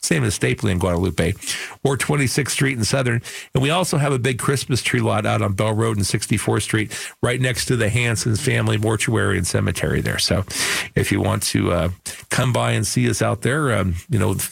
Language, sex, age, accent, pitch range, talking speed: English, male, 50-69, American, 110-140 Hz, 220 wpm